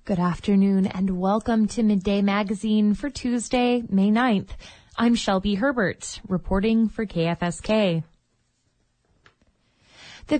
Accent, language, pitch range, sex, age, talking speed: American, English, 190-225 Hz, female, 20-39, 105 wpm